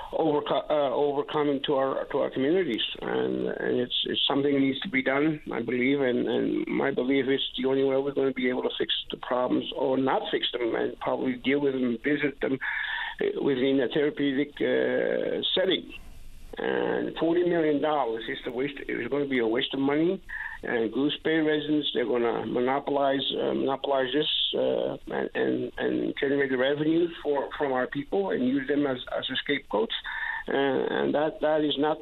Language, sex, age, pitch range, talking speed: English, male, 50-69, 135-165 Hz, 190 wpm